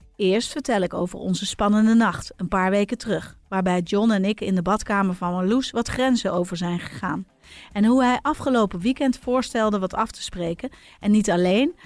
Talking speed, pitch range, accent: 190 wpm, 195-250 Hz, Dutch